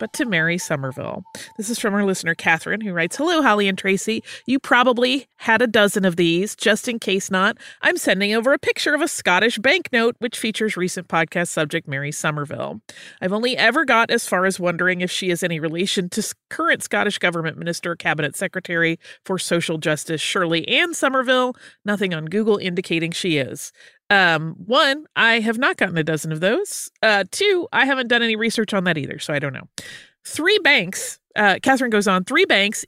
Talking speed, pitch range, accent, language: 195 wpm, 165-240 Hz, American, English